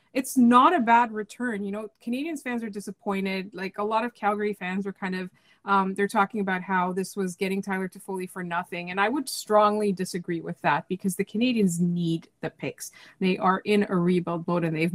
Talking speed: 215 wpm